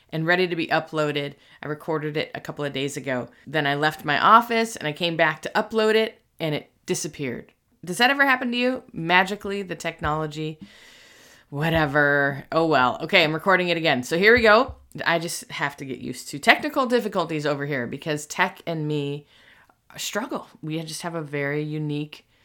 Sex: female